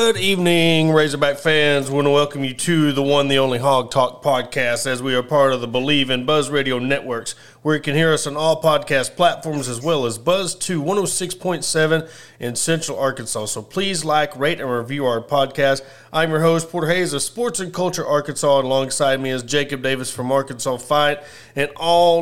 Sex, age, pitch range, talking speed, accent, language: male, 30-49, 135-160 Hz, 205 wpm, American, English